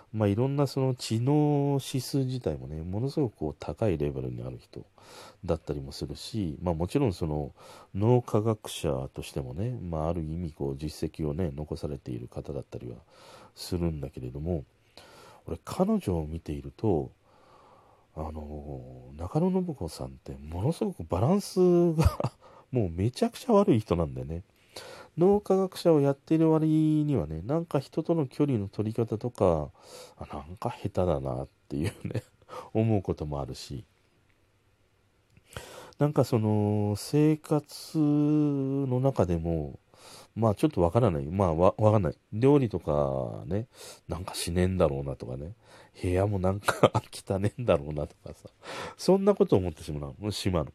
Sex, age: male, 40-59